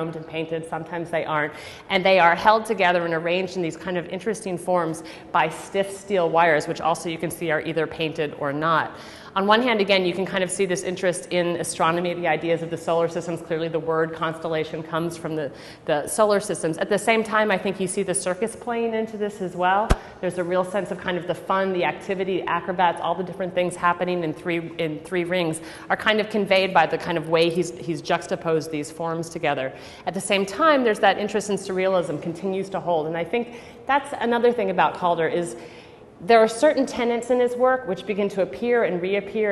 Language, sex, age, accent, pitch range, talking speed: English, female, 30-49, American, 165-195 Hz, 225 wpm